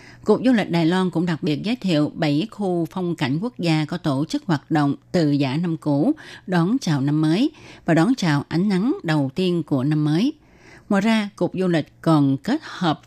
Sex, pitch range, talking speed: female, 155-200 Hz, 215 wpm